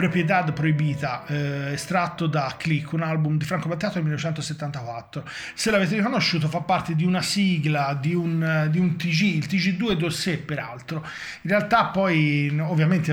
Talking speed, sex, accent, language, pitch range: 155 wpm, male, native, Italian, 145-170 Hz